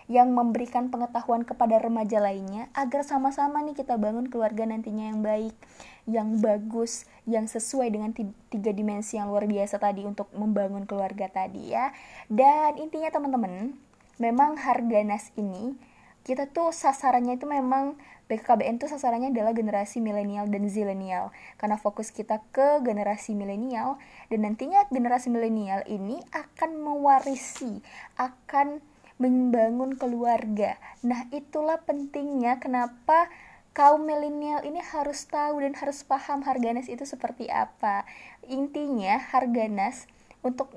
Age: 20-39